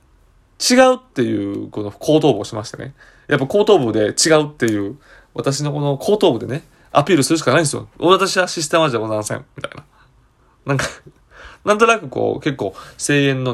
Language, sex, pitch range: Japanese, male, 120-160 Hz